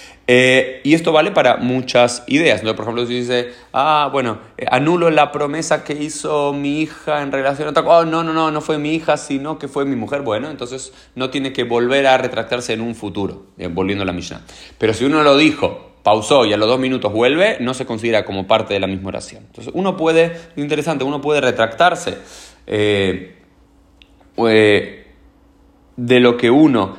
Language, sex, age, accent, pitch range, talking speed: Spanish, male, 30-49, Mexican, 105-145 Hz, 195 wpm